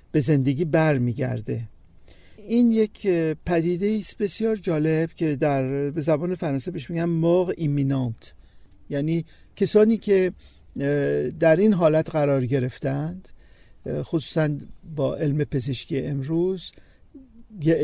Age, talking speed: 50-69, 100 wpm